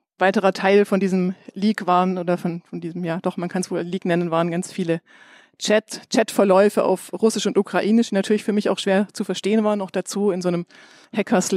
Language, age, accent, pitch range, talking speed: German, 40-59, German, 185-215 Hz, 220 wpm